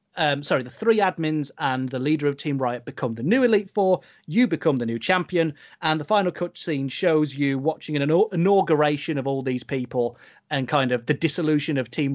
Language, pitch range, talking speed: English, 130-180 Hz, 205 wpm